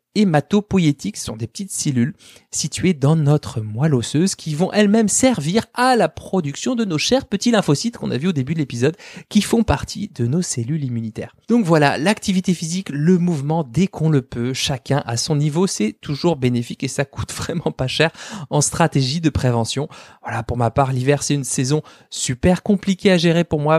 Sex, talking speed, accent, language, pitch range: male, 195 wpm, French, French, 125-175 Hz